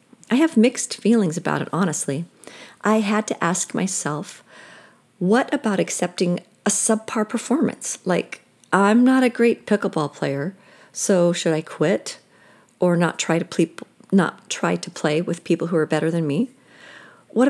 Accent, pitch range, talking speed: American, 170-220 Hz, 145 wpm